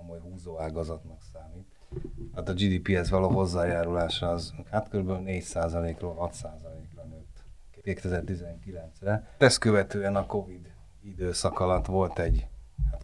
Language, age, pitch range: Hungarian, 30-49, 80-95 Hz